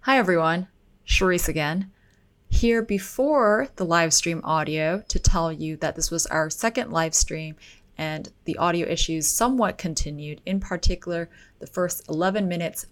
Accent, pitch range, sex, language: American, 160-195 Hz, female, English